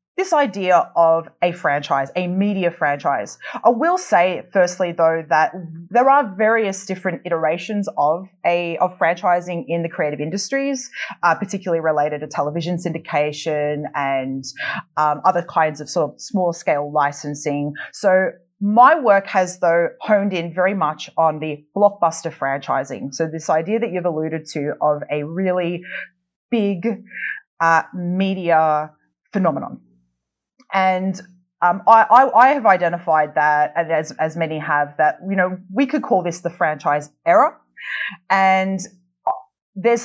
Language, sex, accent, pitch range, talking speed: English, female, Australian, 160-195 Hz, 140 wpm